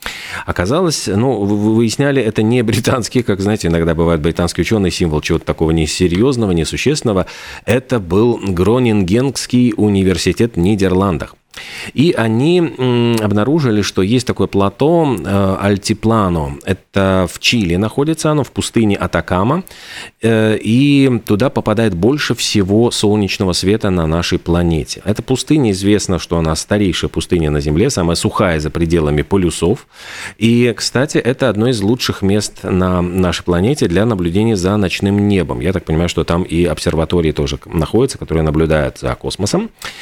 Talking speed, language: 140 wpm, Russian